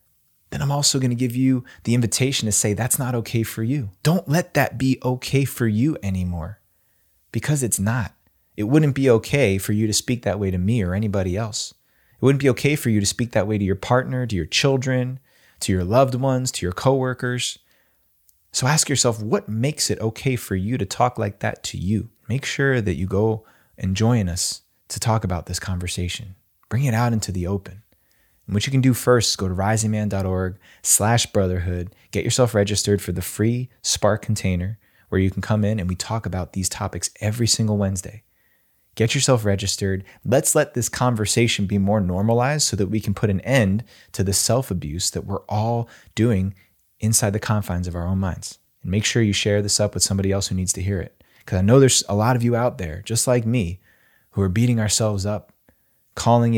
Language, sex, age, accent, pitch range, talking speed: English, male, 20-39, American, 95-120 Hz, 210 wpm